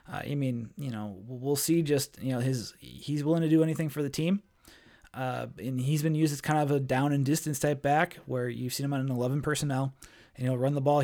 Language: English